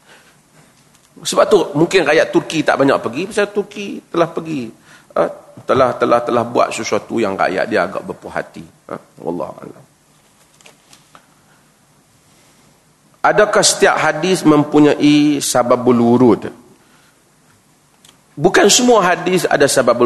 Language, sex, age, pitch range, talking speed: Malay, male, 40-59, 155-215 Hz, 110 wpm